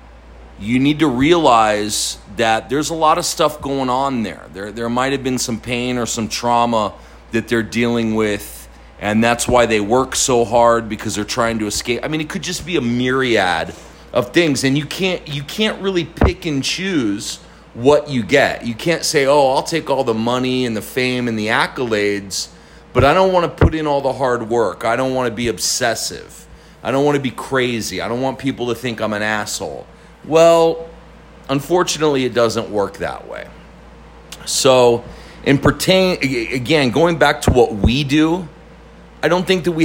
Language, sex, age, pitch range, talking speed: English, male, 40-59, 115-150 Hz, 195 wpm